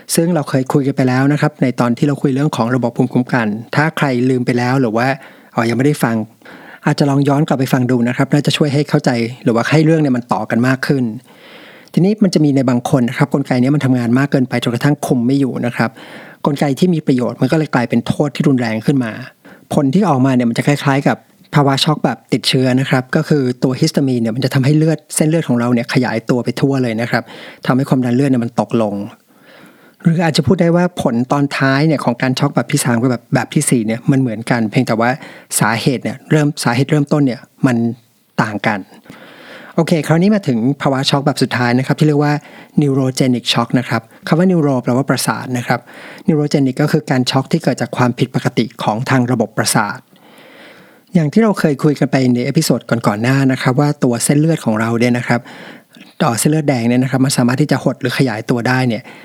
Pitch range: 125-150 Hz